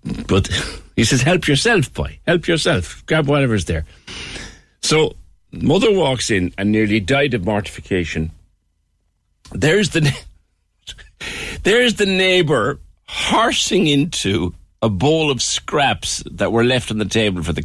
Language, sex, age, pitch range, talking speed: English, male, 60-79, 80-135 Hz, 135 wpm